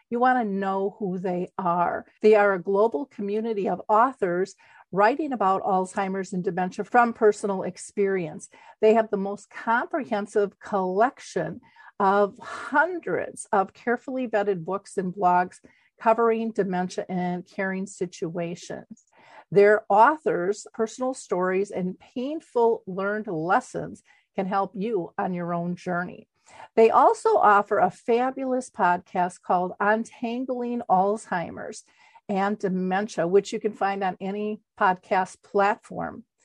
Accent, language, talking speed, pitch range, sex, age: American, English, 125 wpm, 185-230 Hz, female, 50-69